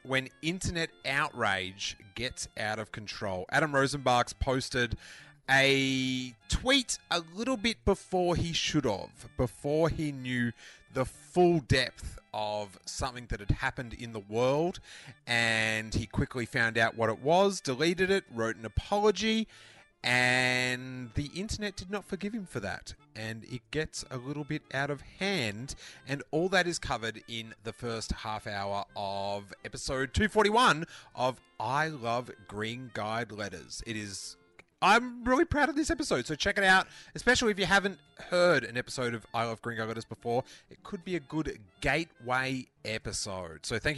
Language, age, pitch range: English, 30-49, 115-180 Hz